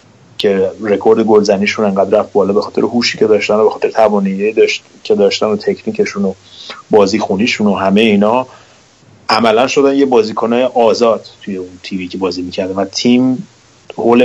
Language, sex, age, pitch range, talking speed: Persian, male, 30-49, 95-130 Hz, 170 wpm